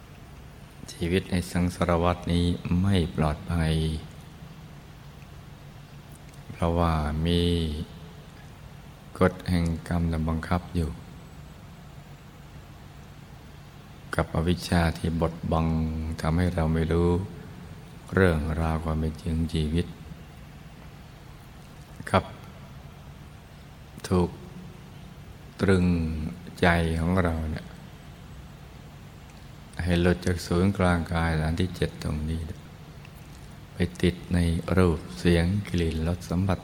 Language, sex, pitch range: Thai, male, 80-90 Hz